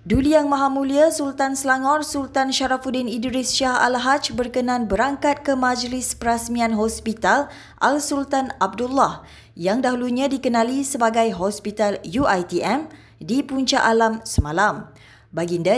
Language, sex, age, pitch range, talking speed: Malay, female, 20-39, 210-260 Hz, 115 wpm